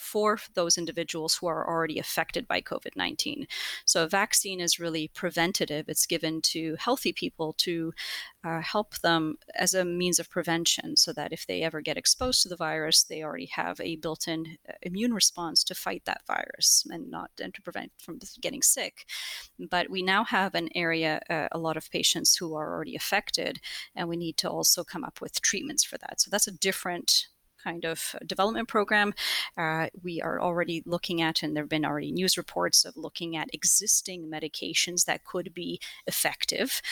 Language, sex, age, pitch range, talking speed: English, female, 30-49, 165-200 Hz, 185 wpm